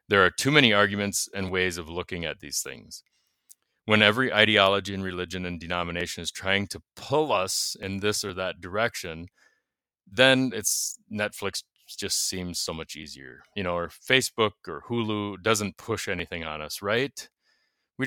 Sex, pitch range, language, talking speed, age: male, 90-110 Hz, English, 165 wpm, 30-49